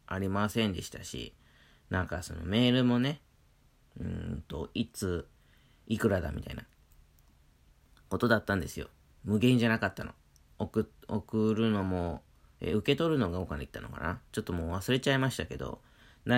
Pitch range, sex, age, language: 80-115 Hz, male, 40-59, Japanese